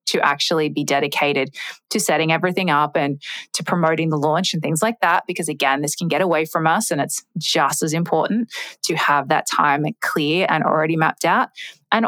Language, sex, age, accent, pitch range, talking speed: English, female, 20-39, Australian, 155-195 Hz, 200 wpm